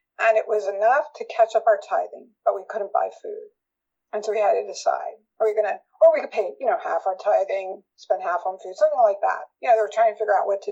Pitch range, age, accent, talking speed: 220-345 Hz, 50-69, American, 280 wpm